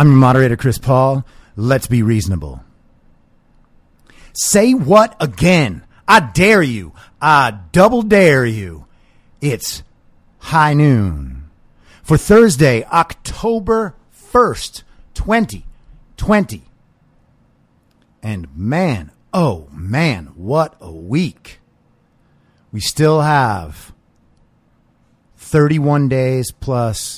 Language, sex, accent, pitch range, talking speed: English, male, American, 110-140 Hz, 85 wpm